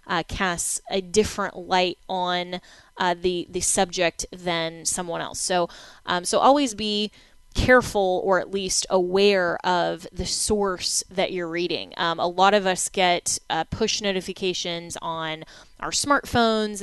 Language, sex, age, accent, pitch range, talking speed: English, female, 20-39, American, 175-200 Hz, 145 wpm